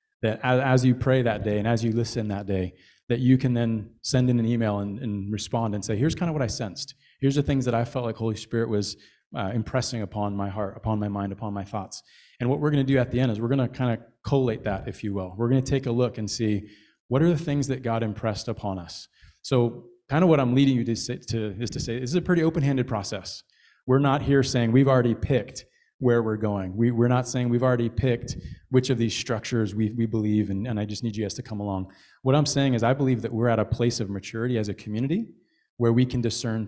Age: 30-49